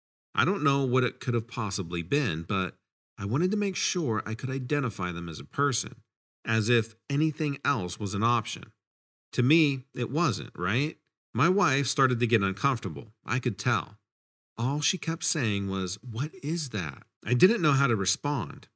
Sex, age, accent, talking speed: male, 40-59, American, 180 wpm